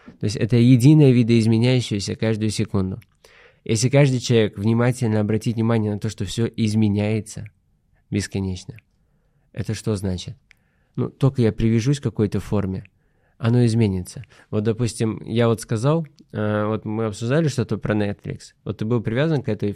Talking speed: 145 wpm